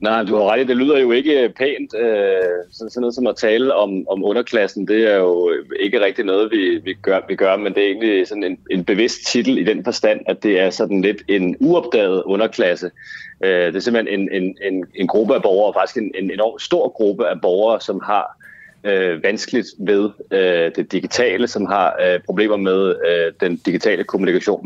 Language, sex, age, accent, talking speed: Danish, male, 30-49, native, 205 wpm